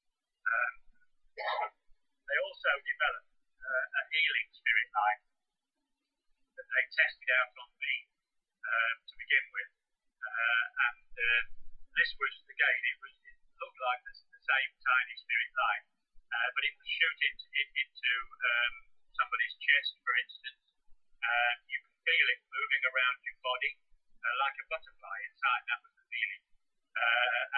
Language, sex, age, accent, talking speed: English, male, 40-59, British, 145 wpm